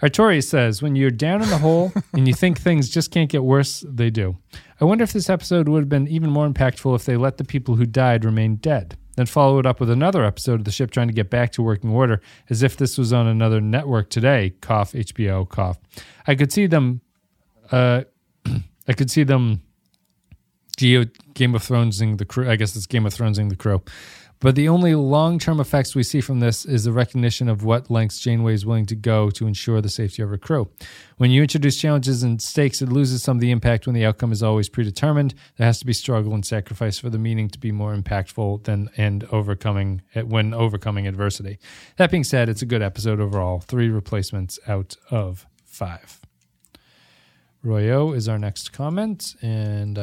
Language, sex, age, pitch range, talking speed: English, male, 30-49, 105-135 Hz, 205 wpm